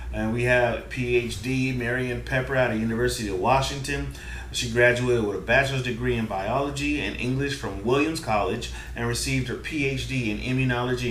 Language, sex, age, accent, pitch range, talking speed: English, male, 30-49, American, 110-125 Hz, 160 wpm